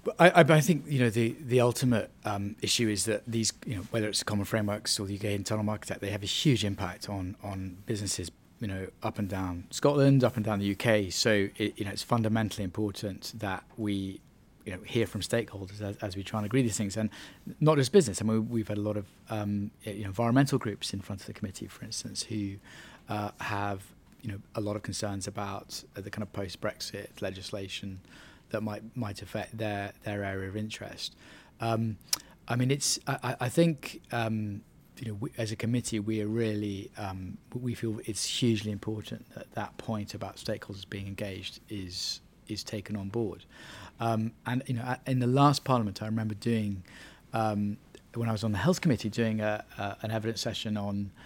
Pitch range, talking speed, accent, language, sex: 100-115 Hz, 205 wpm, British, English, male